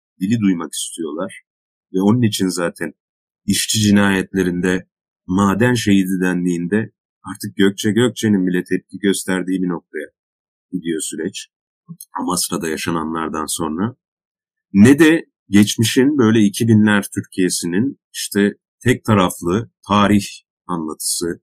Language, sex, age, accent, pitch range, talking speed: Turkish, male, 40-59, native, 100-130 Hz, 100 wpm